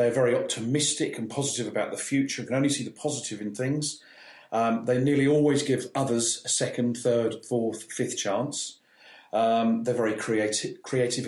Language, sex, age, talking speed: English, male, 40-59, 175 wpm